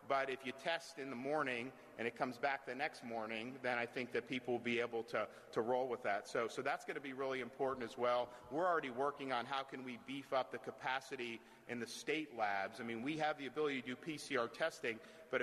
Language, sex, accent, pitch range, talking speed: English, male, American, 120-135 Hz, 240 wpm